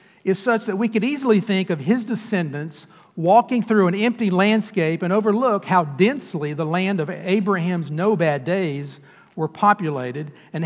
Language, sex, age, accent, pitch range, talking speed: English, male, 50-69, American, 160-205 Hz, 165 wpm